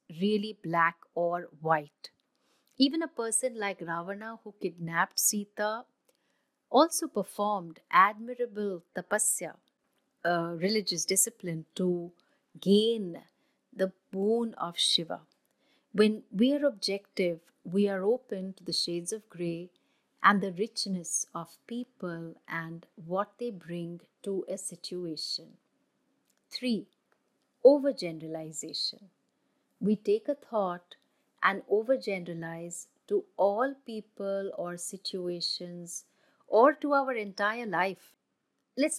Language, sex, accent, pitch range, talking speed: English, female, Indian, 175-240 Hz, 105 wpm